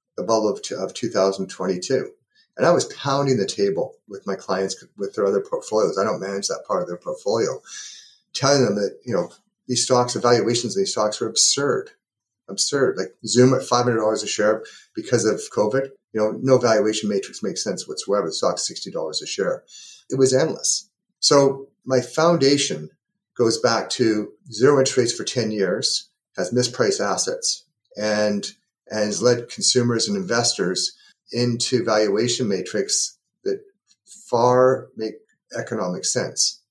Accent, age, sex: American, 40-59, male